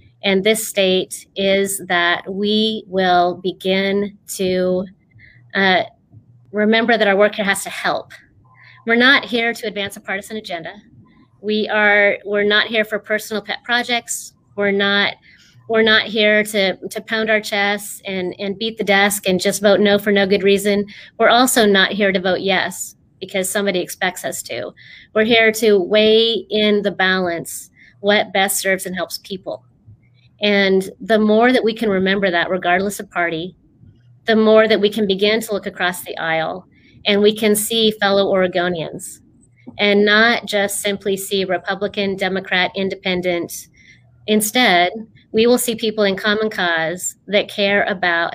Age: 30-49